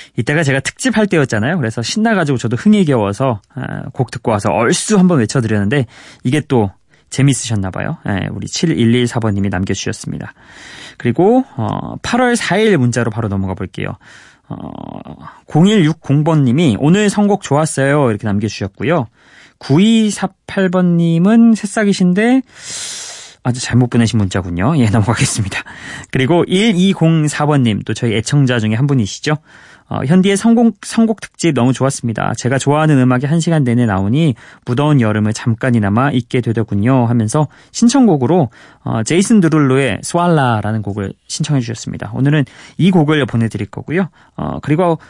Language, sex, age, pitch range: Korean, male, 20-39, 115-170 Hz